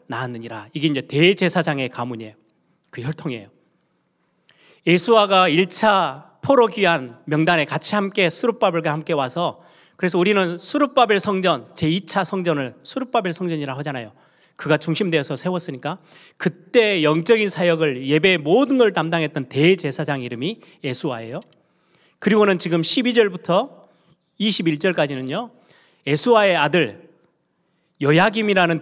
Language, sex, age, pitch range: Korean, male, 30-49, 145-185 Hz